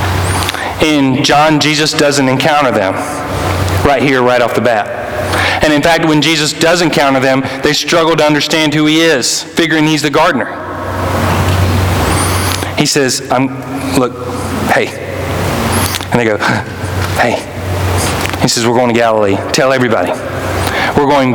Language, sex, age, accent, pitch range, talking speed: English, male, 40-59, American, 95-145 Hz, 140 wpm